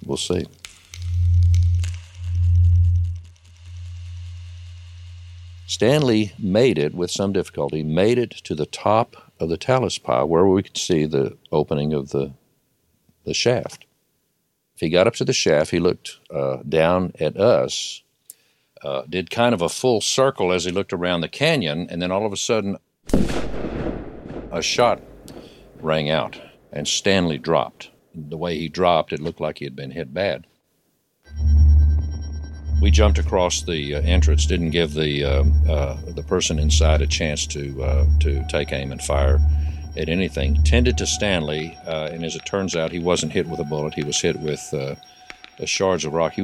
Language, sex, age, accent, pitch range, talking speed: English, male, 60-79, American, 75-90 Hz, 165 wpm